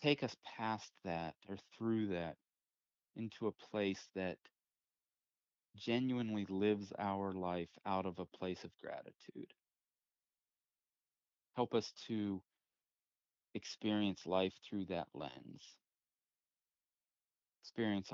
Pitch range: 90-105 Hz